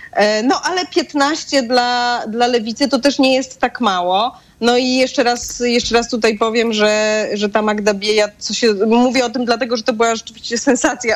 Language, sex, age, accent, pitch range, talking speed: Polish, female, 20-39, native, 210-250 Hz, 175 wpm